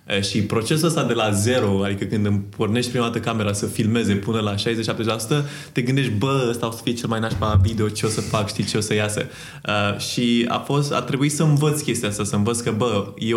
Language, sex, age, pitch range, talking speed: Romanian, male, 20-39, 105-125 Hz, 230 wpm